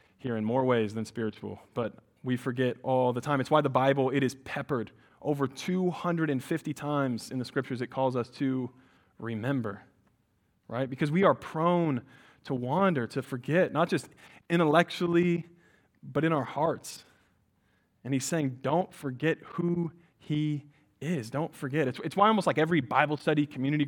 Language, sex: English, male